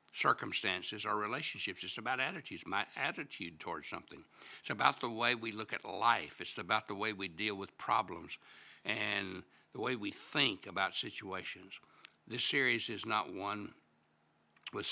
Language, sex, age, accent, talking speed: English, male, 60-79, American, 155 wpm